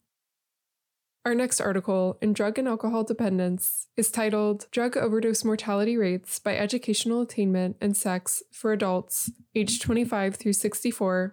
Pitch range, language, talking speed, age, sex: 195-225 Hz, English, 130 wpm, 20-39, female